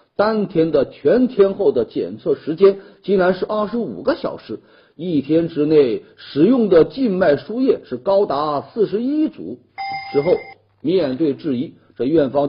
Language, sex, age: Chinese, male, 50-69